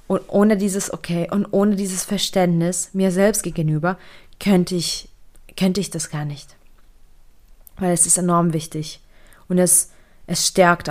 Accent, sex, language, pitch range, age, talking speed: German, female, German, 160-195 Hz, 20-39, 145 wpm